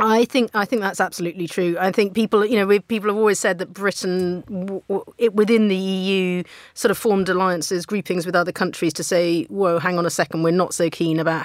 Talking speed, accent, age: 235 wpm, British, 30-49